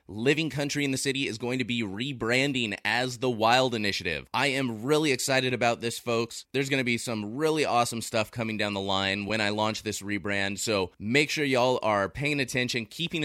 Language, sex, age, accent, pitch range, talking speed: English, male, 20-39, American, 100-130 Hz, 210 wpm